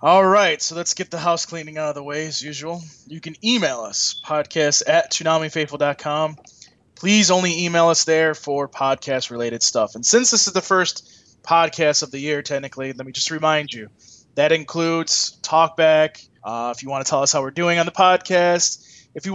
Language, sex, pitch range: English, male, 135-170 Hz